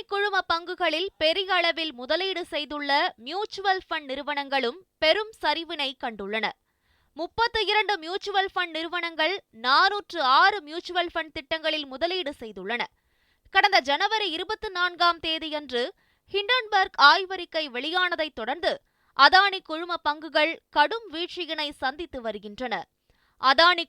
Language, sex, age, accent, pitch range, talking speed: Tamil, female, 20-39, native, 285-370 Hz, 95 wpm